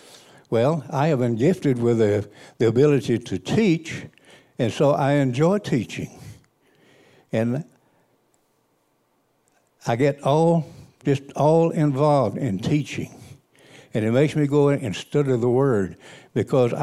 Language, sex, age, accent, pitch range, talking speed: English, male, 60-79, American, 125-150 Hz, 130 wpm